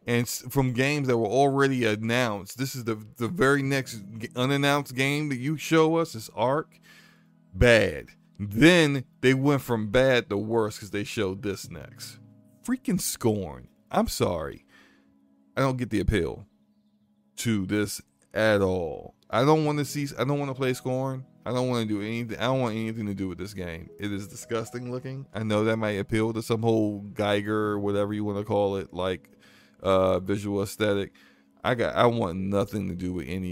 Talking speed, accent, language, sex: 190 wpm, American, English, male